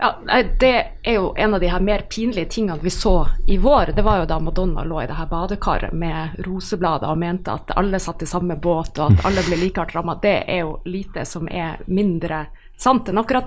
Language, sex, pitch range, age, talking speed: English, female, 170-215 Hz, 30-49, 230 wpm